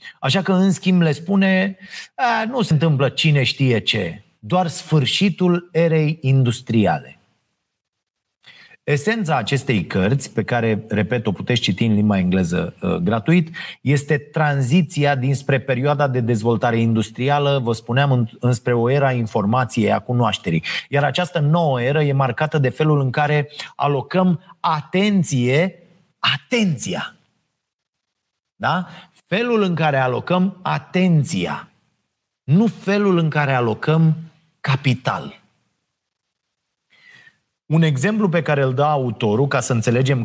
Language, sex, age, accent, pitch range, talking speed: Romanian, male, 30-49, native, 125-170 Hz, 120 wpm